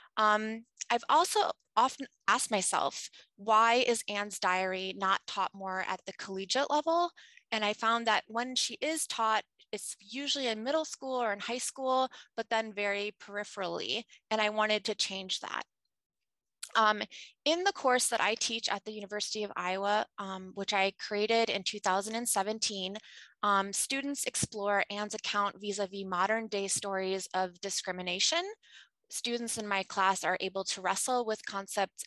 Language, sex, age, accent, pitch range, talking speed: English, female, 20-39, American, 195-240 Hz, 155 wpm